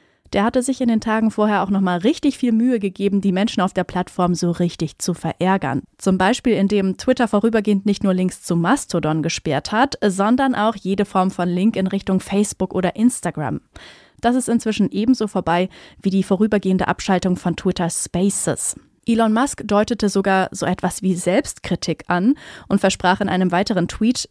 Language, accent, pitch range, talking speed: German, German, 180-225 Hz, 180 wpm